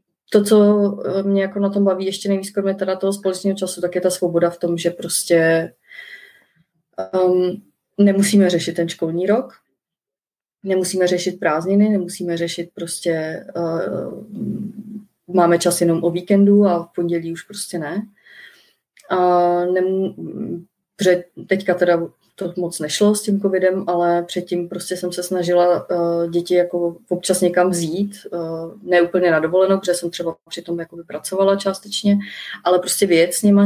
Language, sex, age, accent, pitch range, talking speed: Czech, female, 30-49, native, 170-190 Hz, 150 wpm